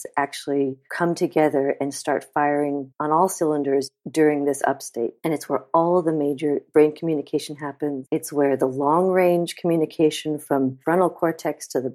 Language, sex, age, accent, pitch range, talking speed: English, female, 50-69, American, 145-175 Hz, 160 wpm